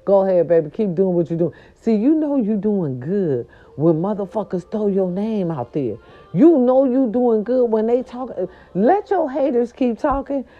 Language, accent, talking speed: English, American, 190 wpm